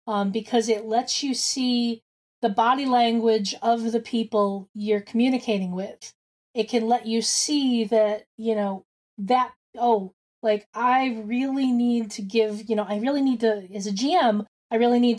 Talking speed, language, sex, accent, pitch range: 170 wpm, English, female, American, 210-245 Hz